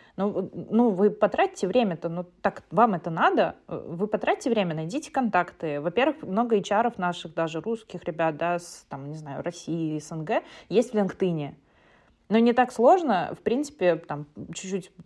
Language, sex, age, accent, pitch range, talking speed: Russian, female, 20-39, native, 160-220 Hz, 160 wpm